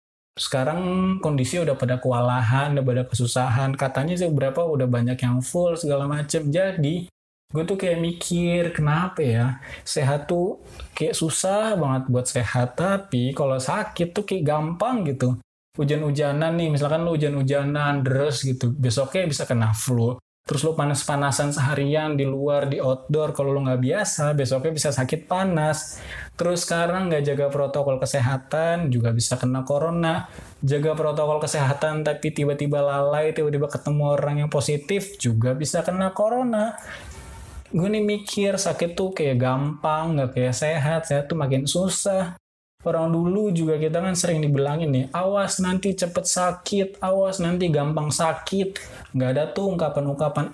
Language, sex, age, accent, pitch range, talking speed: Indonesian, male, 20-39, native, 135-175 Hz, 145 wpm